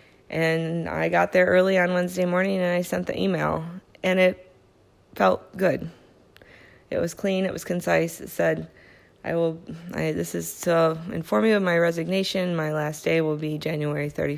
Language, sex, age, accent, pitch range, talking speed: English, female, 20-39, American, 155-185 Hz, 175 wpm